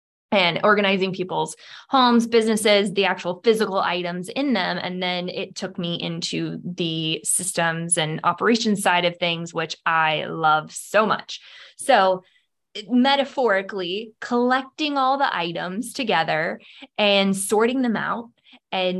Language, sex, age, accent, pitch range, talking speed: English, female, 20-39, American, 180-230 Hz, 130 wpm